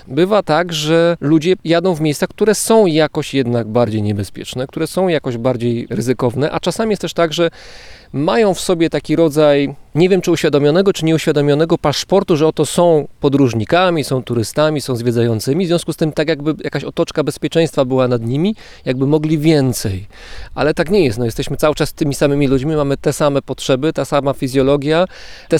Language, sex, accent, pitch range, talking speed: Polish, male, native, 135-160 Hz, 185 wpm